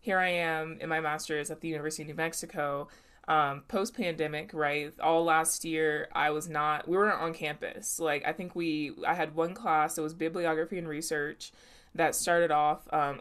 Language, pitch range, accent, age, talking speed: English, 150-165 Hz, American, 20-39, 195 wpm